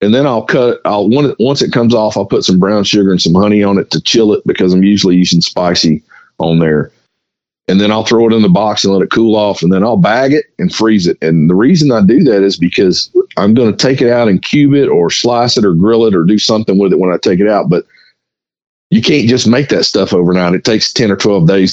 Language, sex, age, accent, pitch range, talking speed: English, male, 40-59, American, 90-120 Hz, 275 wpm